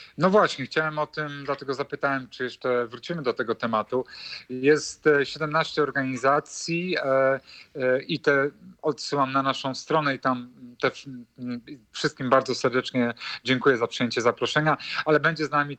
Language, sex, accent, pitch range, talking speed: Polish, male, native, 125-140 Hz, 135 wpm